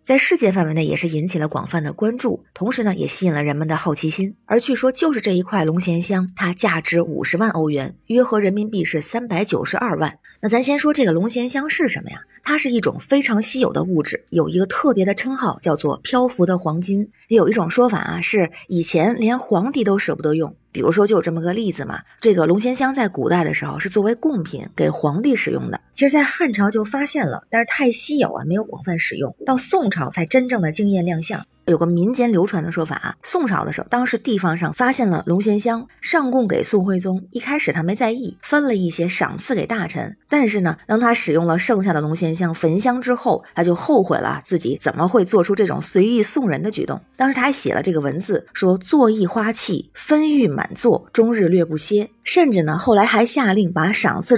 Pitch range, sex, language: 170-240 Hz, female, Chinese